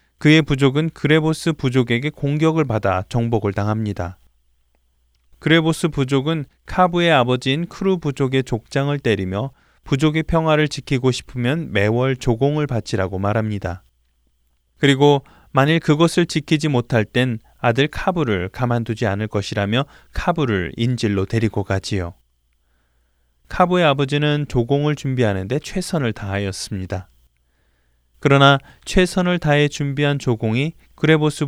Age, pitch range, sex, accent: 20-39, 100-150 Hz, male, native